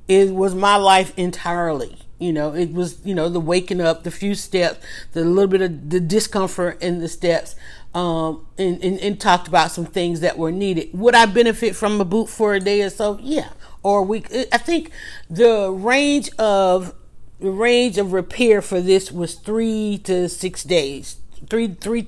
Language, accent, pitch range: English, American, 175-230 Hz